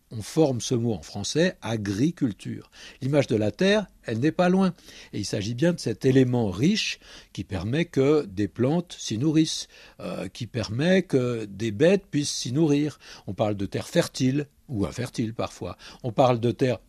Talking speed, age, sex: 190 wpm, 60-79, male